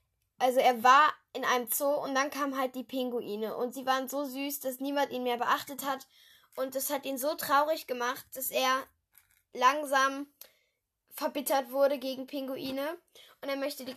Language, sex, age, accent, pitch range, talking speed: German, female, 10-29, German, 250-285 Hz, 175 wpm